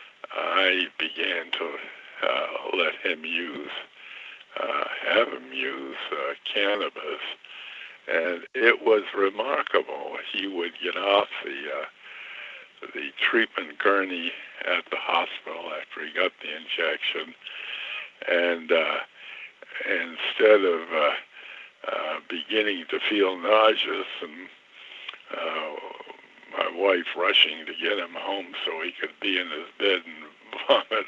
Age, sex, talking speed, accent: 60-79, male, 120 wpm, American